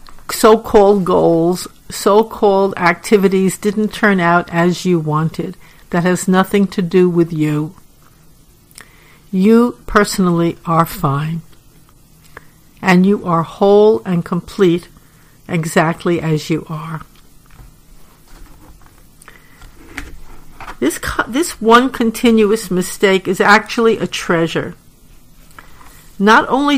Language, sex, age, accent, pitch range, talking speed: English, female, 60-79, American, 170-220 Hz, 95 wpm